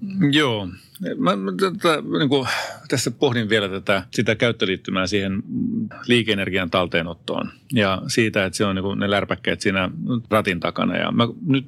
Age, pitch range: 30-49, 95-120 Hz